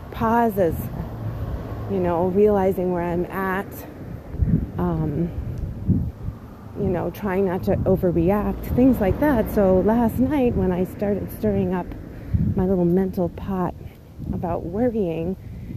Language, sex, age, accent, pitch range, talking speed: English, female, 30-49, American, 175-220 Hz, 120 wpm